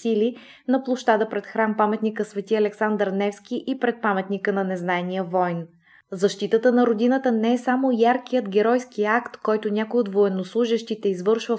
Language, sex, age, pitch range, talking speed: Bulgarian, female, 20-39, 200-235 Hz, 150 wpm